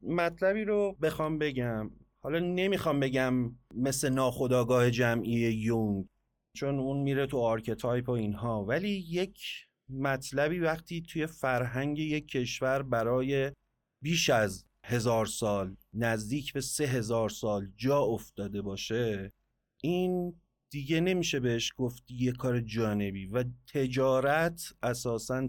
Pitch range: 120-155 Hz